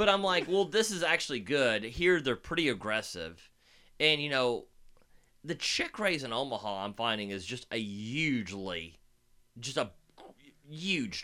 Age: 30-49